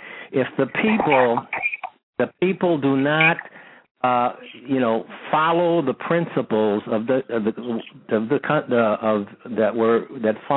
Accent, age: American, 60-79